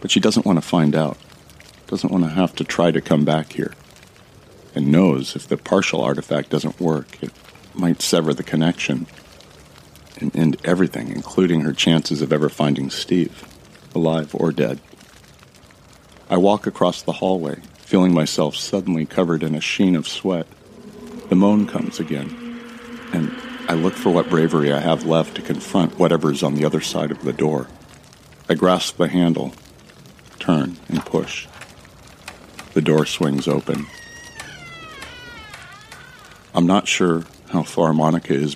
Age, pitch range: 40-59, 75-90 Hz